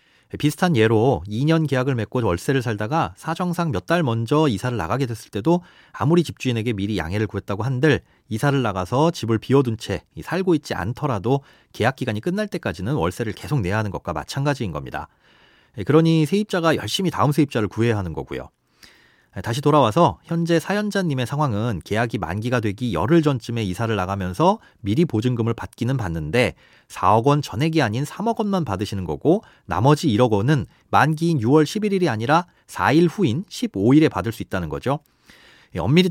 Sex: male